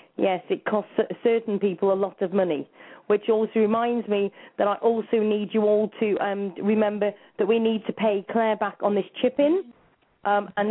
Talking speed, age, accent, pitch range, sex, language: 190 wpm, 30-49, British, 195-240 Hz, female, English